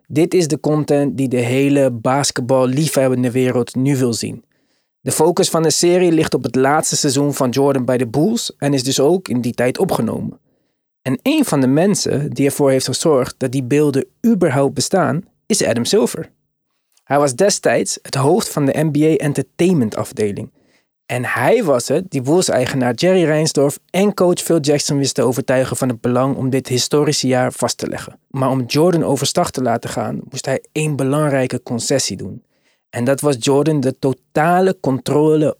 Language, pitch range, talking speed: Dutch, 130-155 Hz, 180 wpm